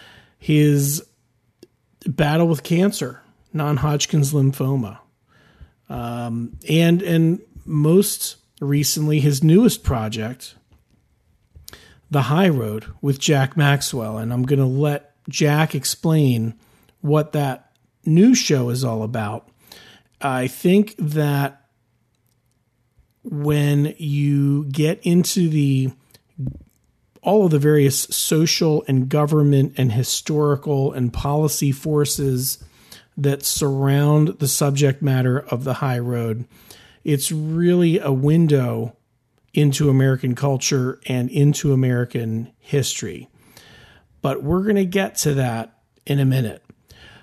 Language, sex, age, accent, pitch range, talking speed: English, male, 40-59, American, 125-150 Hz, 105 wpm